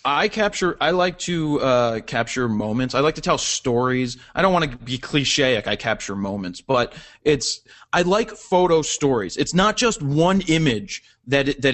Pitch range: 130-175 Hz